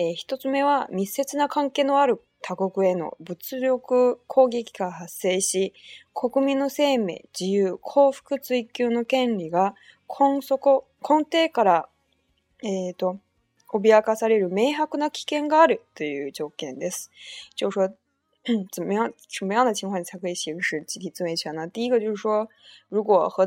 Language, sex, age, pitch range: Chinese, female, 20-39, 180-250 Hz